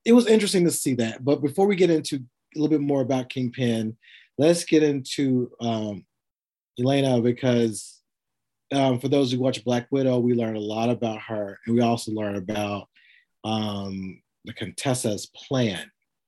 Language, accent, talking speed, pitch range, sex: English, American, 165 wpm, 110-135 Hz, male